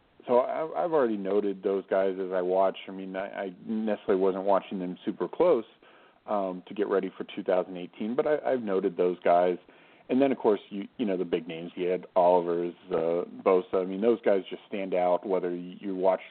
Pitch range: 90-105 Hz